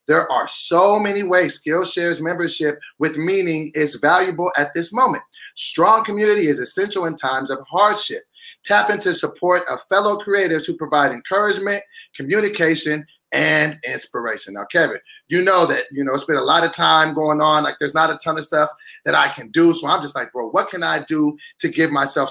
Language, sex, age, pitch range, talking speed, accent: English, male, 30-49, 160-205 Hz, 195 wpm, American